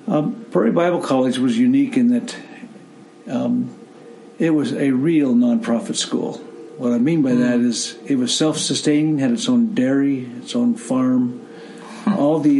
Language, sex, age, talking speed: English, male, 50-69, 155 wpm